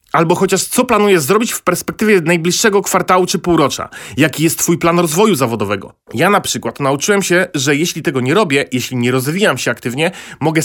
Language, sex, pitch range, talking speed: Polish, male, 140-185 Hz, 185 wpm